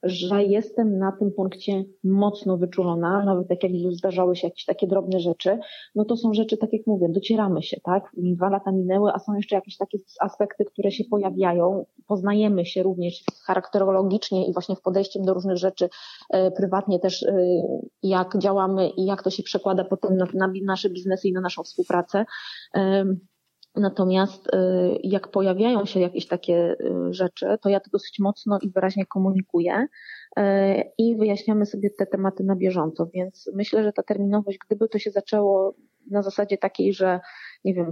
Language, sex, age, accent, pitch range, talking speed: Polish, female, 20-39, native, 190-205 Hz, 165 wpm